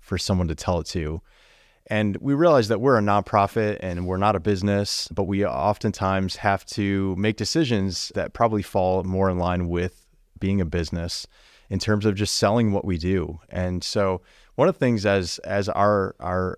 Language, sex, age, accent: English, male, 30-49, American